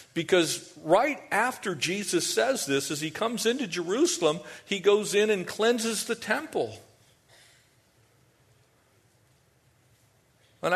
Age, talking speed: 50-69, 105 wpm